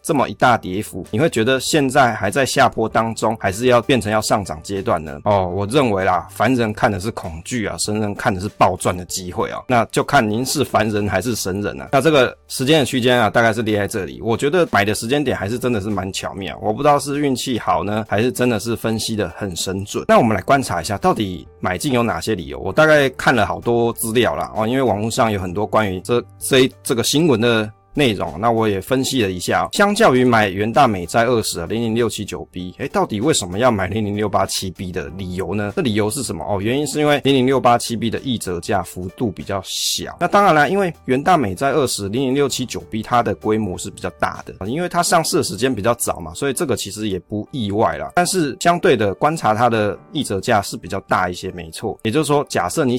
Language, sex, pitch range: Chinese, male, 100-130 Hz